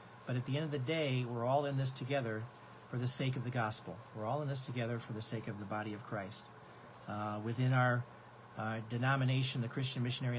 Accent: American